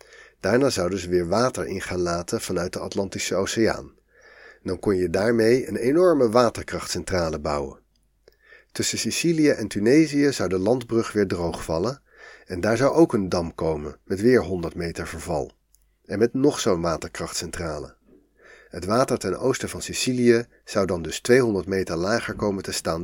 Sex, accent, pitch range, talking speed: male, Dutch, 90-120 Hz, 160 wpm